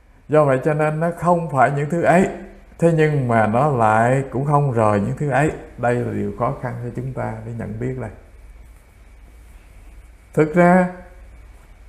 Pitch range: 110-160 Hz